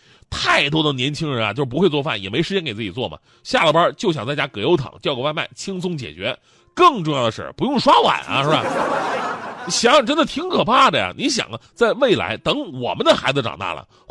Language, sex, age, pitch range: Chinese, male, 30-49, 115-180 Hz